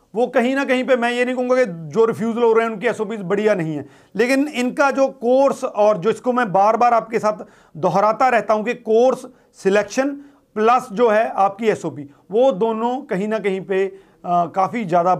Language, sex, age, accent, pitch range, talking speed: Hindi, male, 40-59, native, 195-245 Hz, 200 wpm